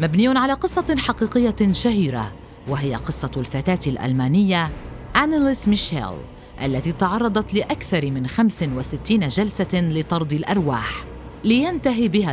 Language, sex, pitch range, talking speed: Arabic, female, 145-240 Hz, 100 wpm